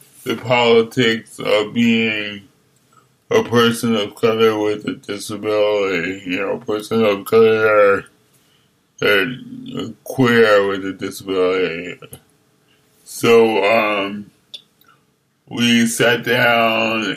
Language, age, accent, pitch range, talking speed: French, 60-79, American, 105-120 Hz, 95 wpm